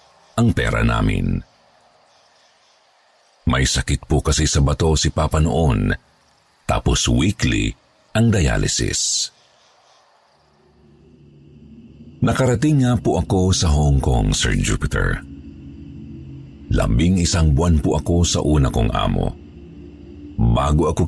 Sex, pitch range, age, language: male, 70-90 Hz, 50-69, Filipino